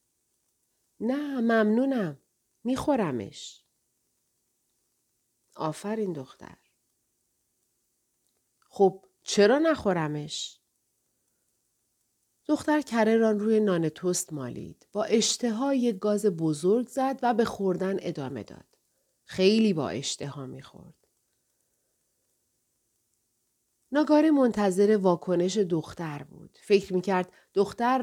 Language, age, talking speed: Persian, 40-59, 75 wpm